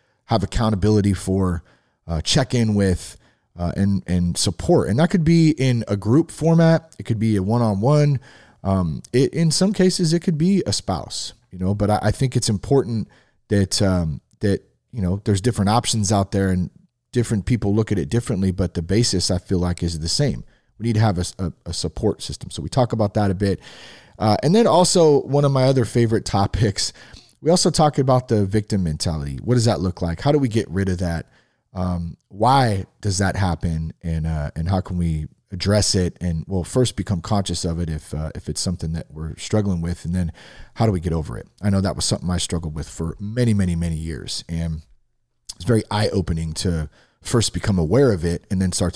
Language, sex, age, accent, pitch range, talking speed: English, male, 30-49, American, 85-120 Hz, 215 wpm